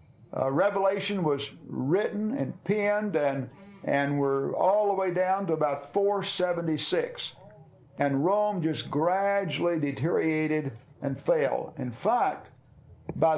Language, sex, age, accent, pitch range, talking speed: English, male, 50-69, American, 140-185 Hz, 115 wpm